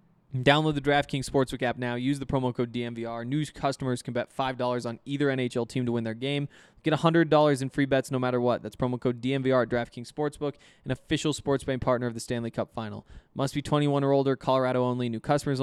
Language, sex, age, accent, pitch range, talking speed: English, male, 20-39, American, 120-150 Hz, 225 wpm